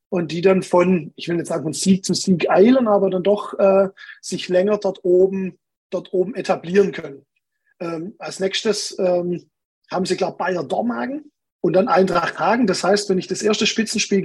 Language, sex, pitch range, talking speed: German, male, 180-210 Hz, 190 wpm